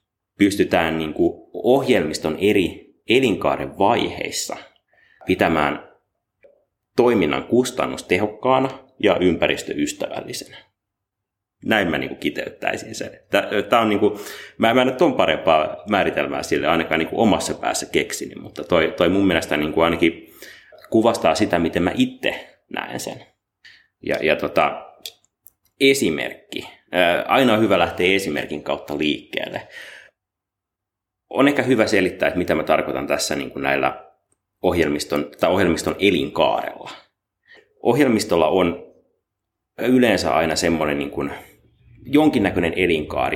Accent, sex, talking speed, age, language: native, male, 110 wpm, 30-49, Finnish